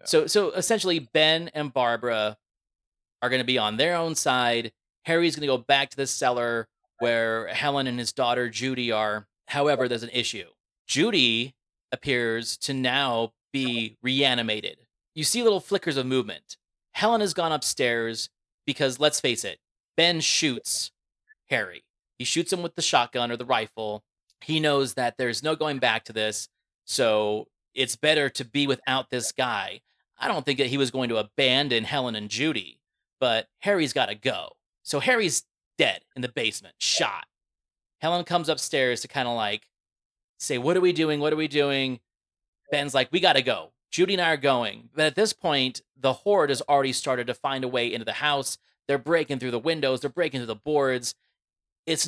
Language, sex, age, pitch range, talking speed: English, male, 30-49, 120-155 Hz, 185 wpm